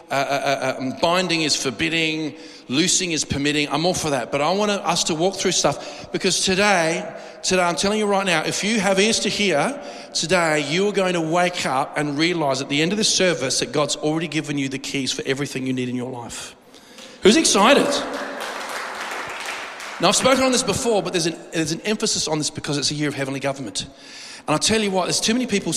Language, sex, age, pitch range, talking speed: English, male, 40-59, 145-185 Hz, 220 wpm